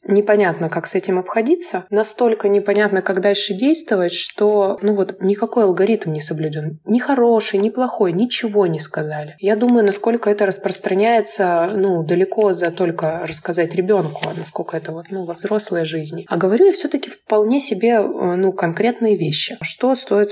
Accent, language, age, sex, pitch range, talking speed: native, Russian, 20-39, female, 180-220 Hz, 155 wpm